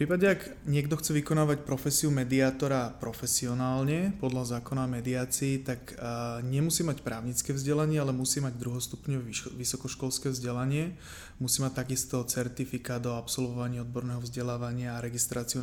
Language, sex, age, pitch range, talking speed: Slovak, male, 20-39, 120-135 Hz, 130 wpm